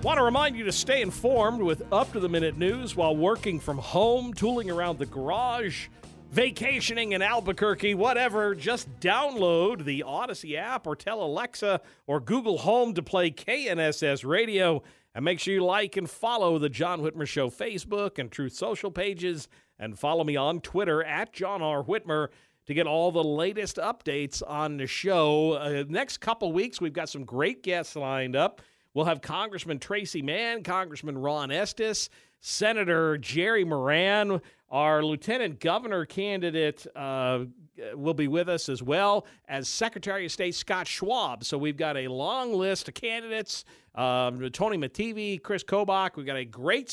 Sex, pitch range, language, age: male, 150-205 Hz, English, 50-69